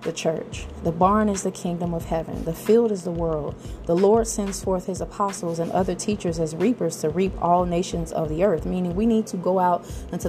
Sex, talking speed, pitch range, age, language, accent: female, 225 wpm, 165-195 Hz, 20-39, English, American